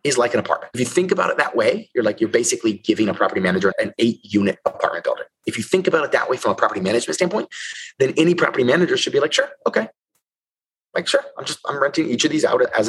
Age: 30-49